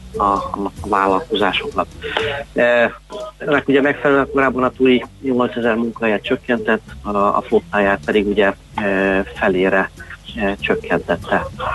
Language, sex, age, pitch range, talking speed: Hungarian, male, 30-49, 100-120 Hz, 110 wpm